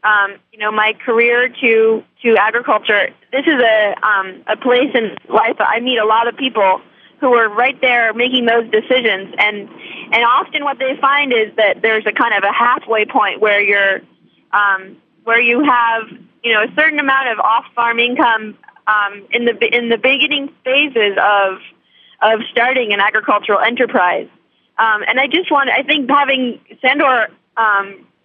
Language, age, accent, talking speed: English, 20-39, American, 175 wpm